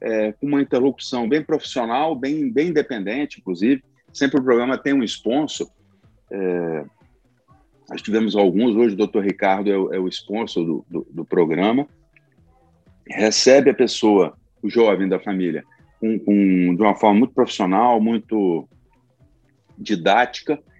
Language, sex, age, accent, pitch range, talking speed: Portuguese, male, 40-59, Brazilian, 100-145 Hz, 140 wpm